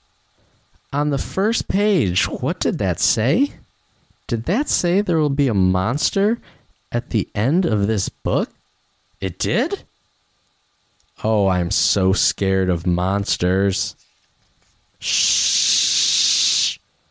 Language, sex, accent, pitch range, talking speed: English, male, American, 85-110 Hz, 110 wpm